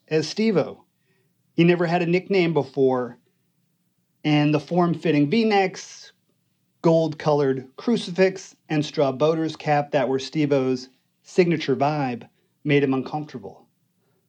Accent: American